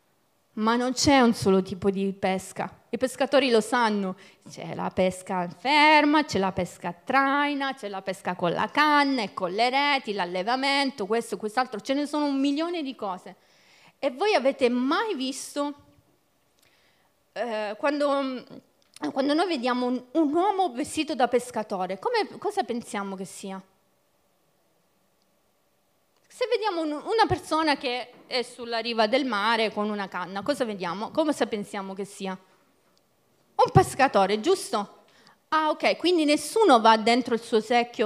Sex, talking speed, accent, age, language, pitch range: female, 145 wpm, native, 30-49, Italian, 205-290 Hz